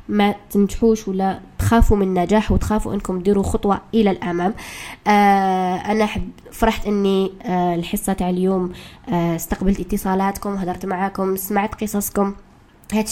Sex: female